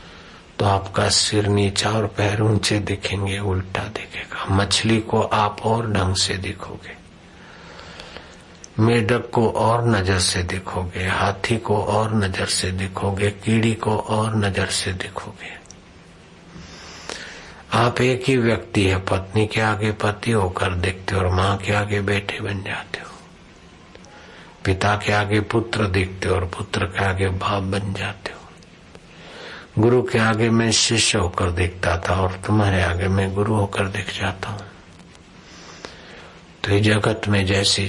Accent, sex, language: native, male, Hindi